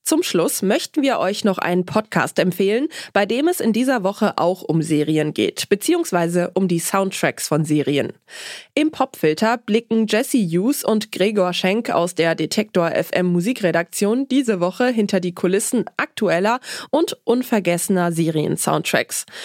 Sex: female